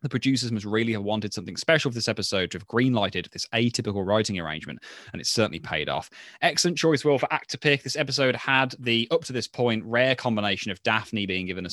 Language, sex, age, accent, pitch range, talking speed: English, male, 20-39, British, 105-130 Hz, 215 wpm